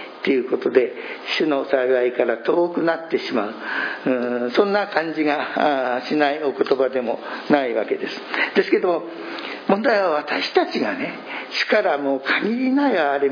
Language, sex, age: Japanese, male, 60-79